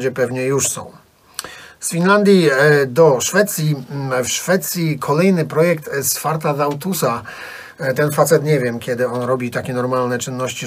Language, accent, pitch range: Polish, native, 130-165 Hz